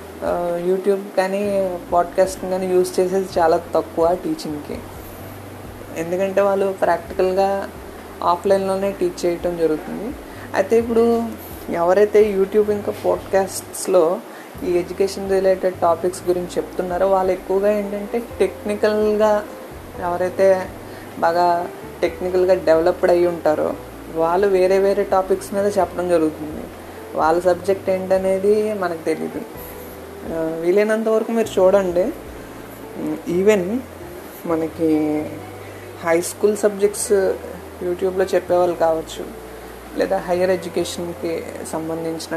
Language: Telugu